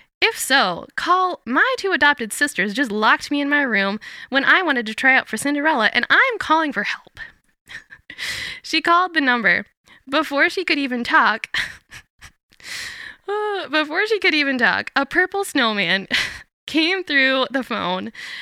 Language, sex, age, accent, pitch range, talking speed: English, female, 10-29, American, 225-340 Hz, 155 wpm